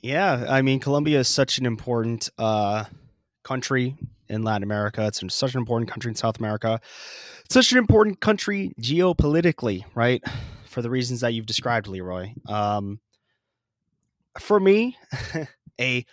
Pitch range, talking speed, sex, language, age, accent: 110-145 Hz, 145 wpm, male, English, 20-39, American